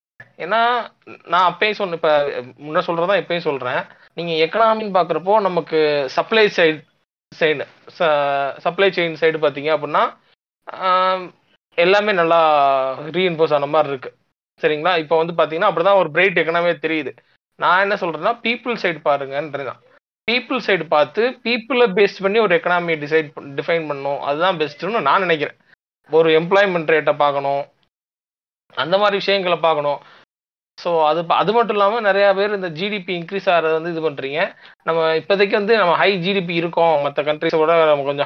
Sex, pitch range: male, 150-195 Hz